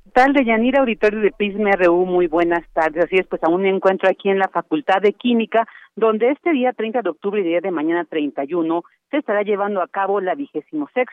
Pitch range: 175-230 Hz